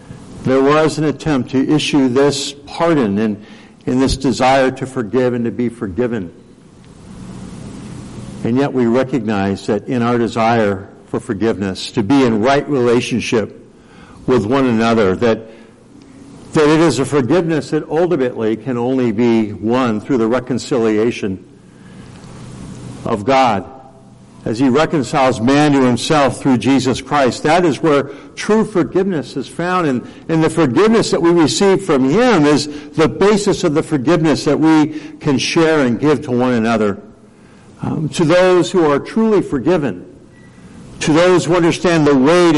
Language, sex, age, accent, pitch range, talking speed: English, male, 60-79, American, 125-165 Hz, 150 wpm